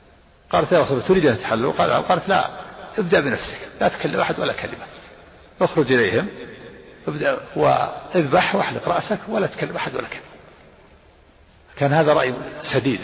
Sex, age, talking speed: male, 60-79, 145 wpm